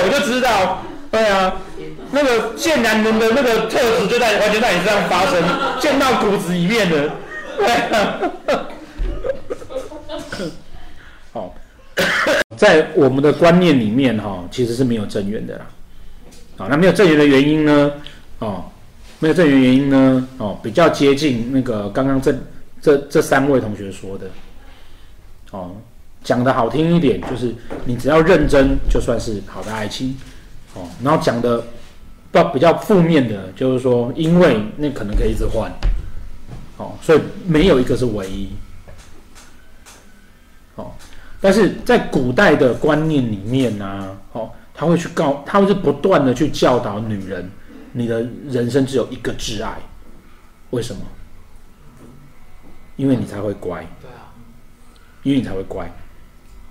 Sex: male